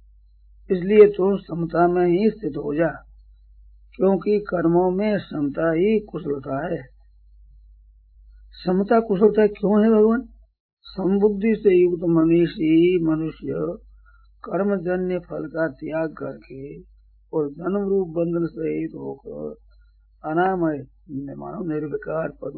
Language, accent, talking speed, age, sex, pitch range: Hindi, native, 105 wpm, 50-69, male, 155-200 Hz